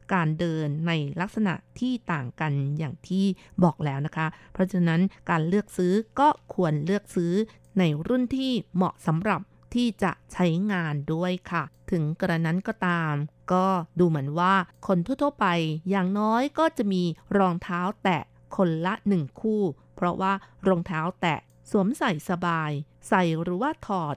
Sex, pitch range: female, 165-205 Hz